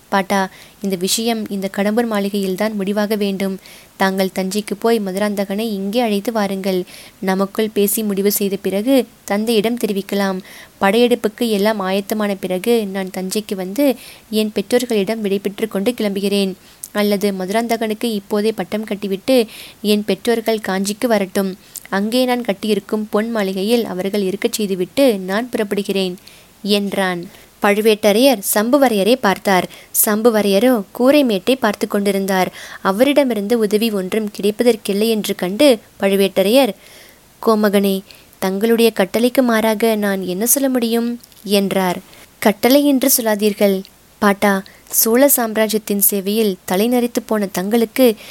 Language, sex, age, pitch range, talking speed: Tamil, female, 20-39, 195-230 Hz, 105 wpm